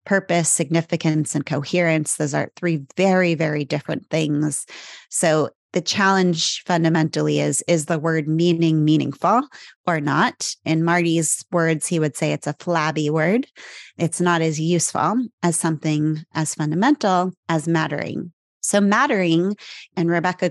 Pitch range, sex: 155-180 Hz, female